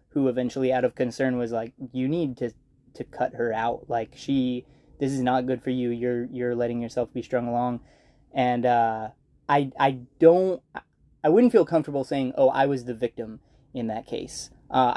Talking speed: 195 wpm